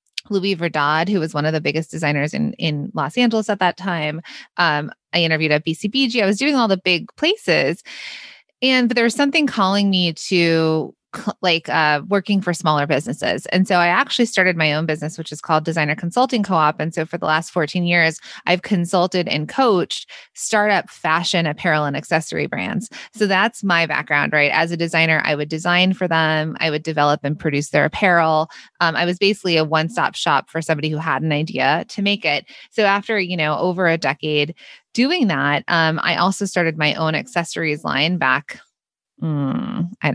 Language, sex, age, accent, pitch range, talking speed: English, female, 20-39, American, 155-195 Hz, 195 wpm